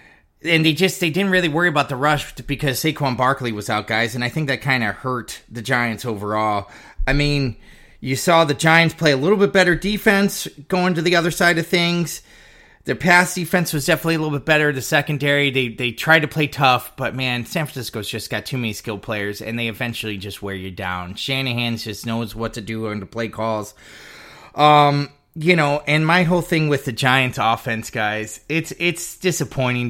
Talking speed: 210 wpm